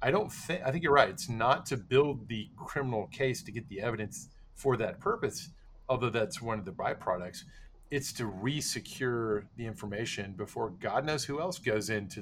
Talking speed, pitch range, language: 190 wpm, 110-150 Hz, English